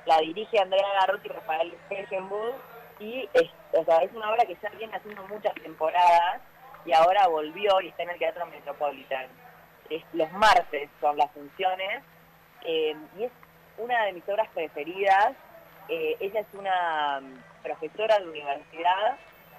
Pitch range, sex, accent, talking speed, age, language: 155-200 Hz, female, Argentinian, 145 wpm, 20-39, Spanish